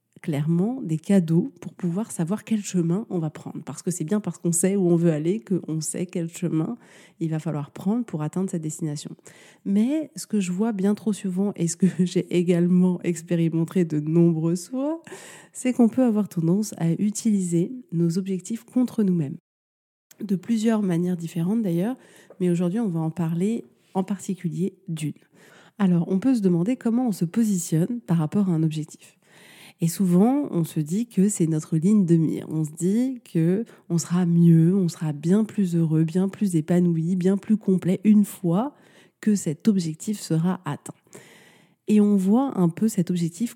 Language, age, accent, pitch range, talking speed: French, 30-49, French, 170-205 Hz, 180 wpm